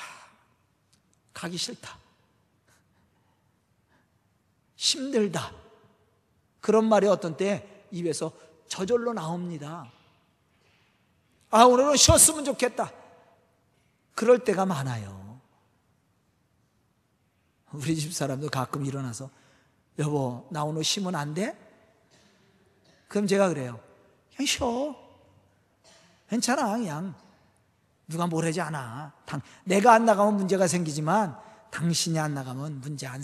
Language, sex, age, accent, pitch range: Korean, male, 40-59, native, 130-210 Hz